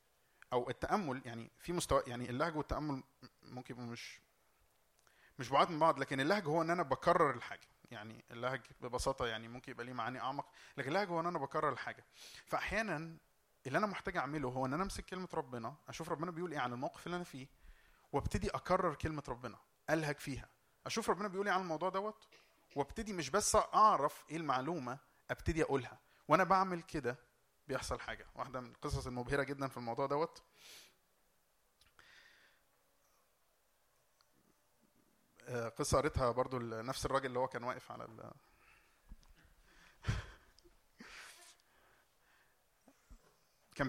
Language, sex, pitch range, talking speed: Arabic, male, 120-160 Hz, 140 wpm